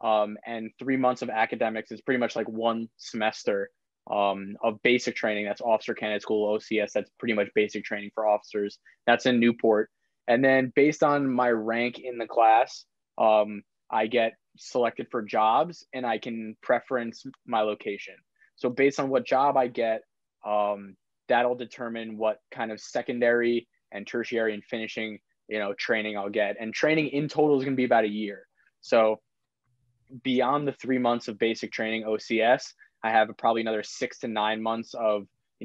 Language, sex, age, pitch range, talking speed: English, male, 20-39, 105-125 Hz, 175 wpm